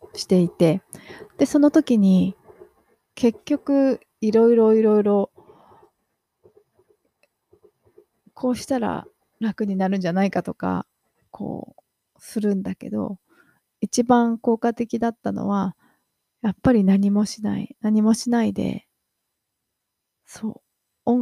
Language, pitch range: Japanese, 200-245 Hz